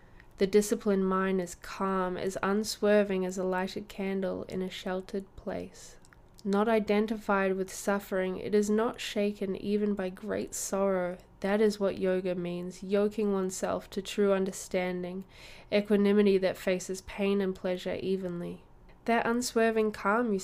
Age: 10-29